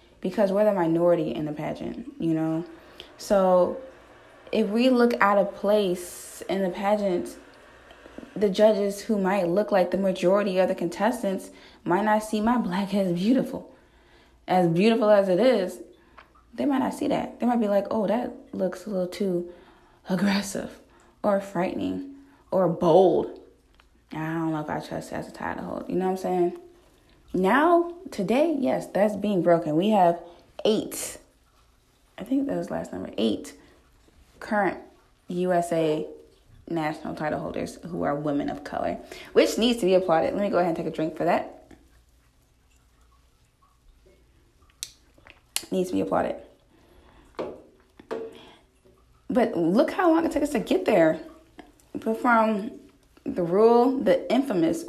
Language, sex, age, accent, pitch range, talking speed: English, female, 20-39, American, 175-230 Hz, 150 wpm